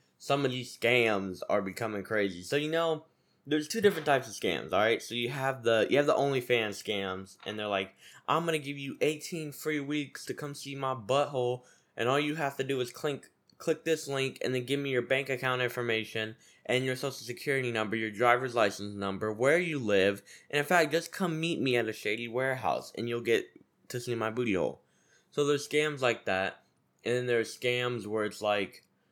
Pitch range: 110-145 Hz